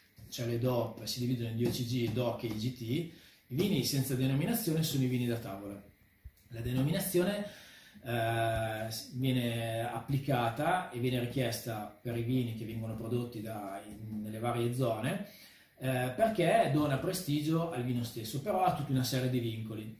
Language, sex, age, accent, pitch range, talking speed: Italian, male, 30-49, native, 115-155 Hz, 155 wpm